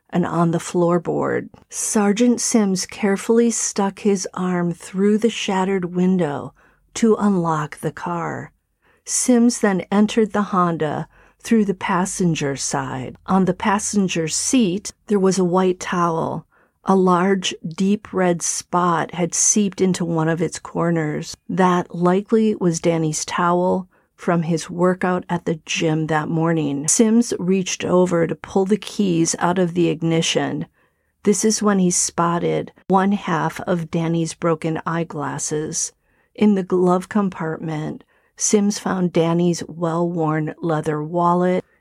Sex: female